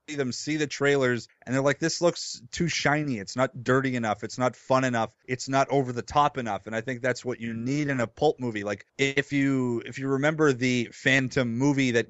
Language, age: English, 30-49